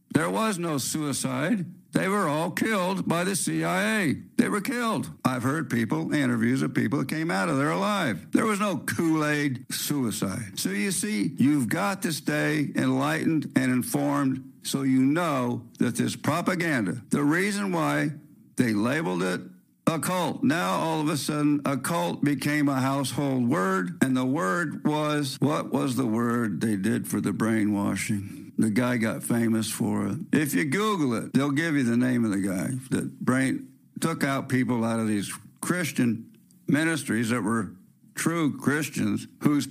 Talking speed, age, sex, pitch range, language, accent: 170 wpm, 60-79, male, 120-160 Hz, English, American